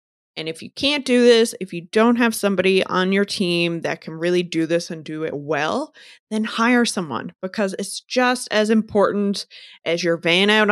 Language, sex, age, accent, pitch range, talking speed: English, female, 20-39, American, 170-220 Hz, 195 wpm